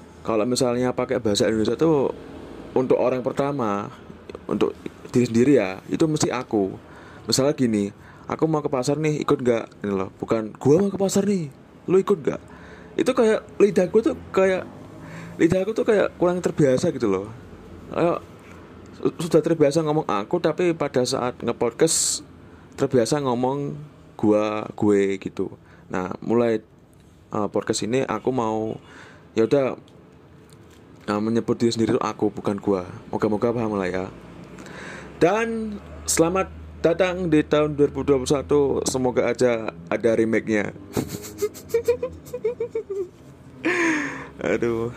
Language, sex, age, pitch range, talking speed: Indonesian, male, 20-39, 105-150 Hz, 125 wpm